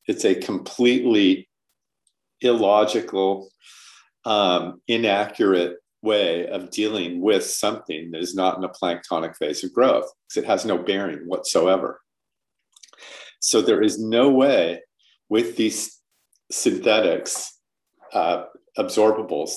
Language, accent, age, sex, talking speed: English, American, 50-69, male, 110 wpm